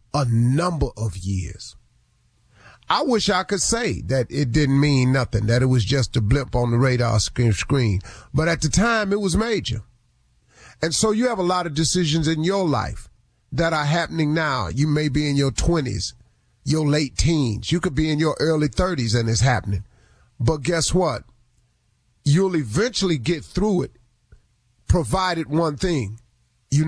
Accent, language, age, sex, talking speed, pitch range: American, English, 40-59, male, 175 wpm, 120-165 Hz